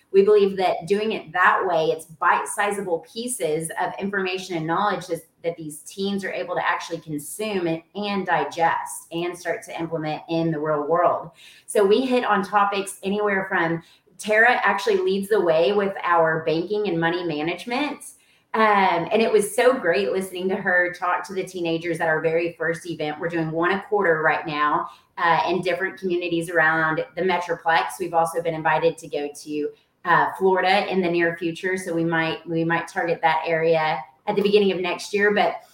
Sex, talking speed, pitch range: female, 185 wpm, 165-205 Hz